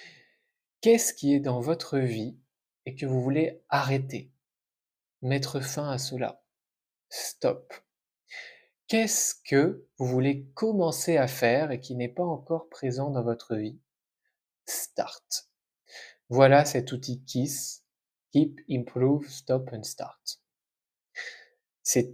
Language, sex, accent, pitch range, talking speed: French, male, French, 125-150 Hz, 115 wpm